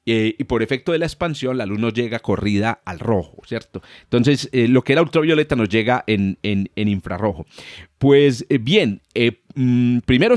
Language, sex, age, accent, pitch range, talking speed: Spanish, male, 40-59, Colombian, 110-140 Hz, 185 wpm